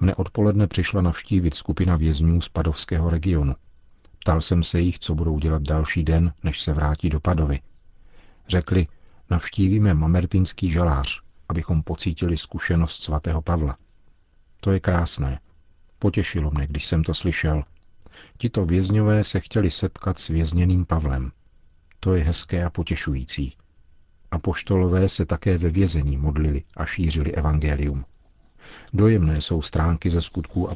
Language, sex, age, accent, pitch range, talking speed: Czech, male, 50-69, native, 80-90 Hz, 135 wpm